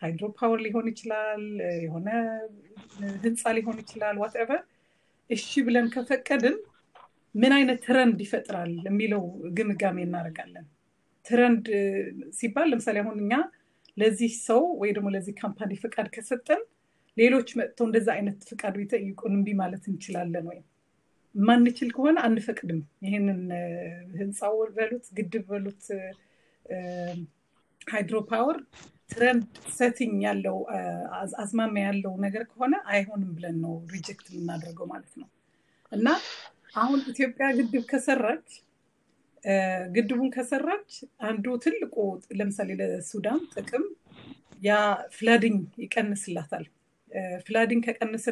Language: Amharic